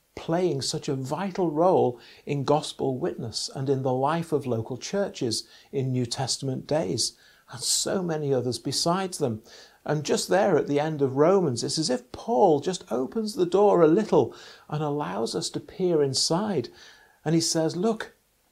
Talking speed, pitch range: 170 wpm, 135-180 Hz